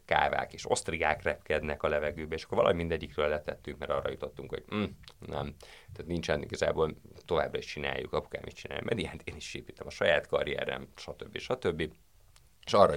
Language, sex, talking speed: Hungarian, male, 170 wpm